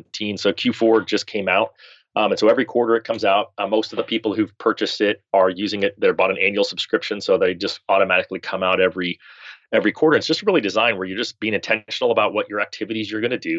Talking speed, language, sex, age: 245 wpm, English, male, 30-49